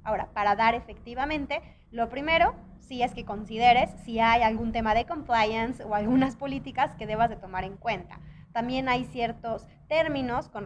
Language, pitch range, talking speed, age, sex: Spanish, 225-290 Hz, 170 wpm, 20-39, female